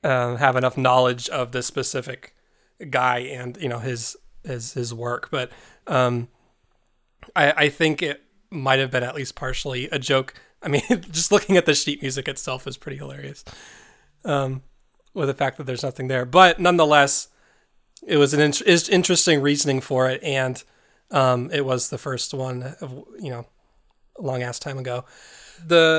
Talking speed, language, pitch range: 170 wpm, English, 130-160 Hz